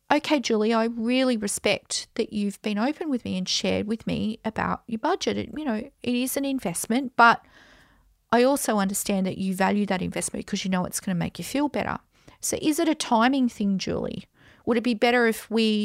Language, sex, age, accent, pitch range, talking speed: English, female, 40-59, Australian, 200-260 Hz, 210 wpm